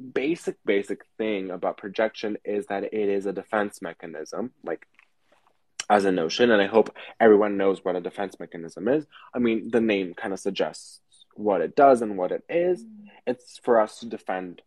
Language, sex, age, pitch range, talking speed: English, male, 20-39, 95-110 Hz, 185 wpm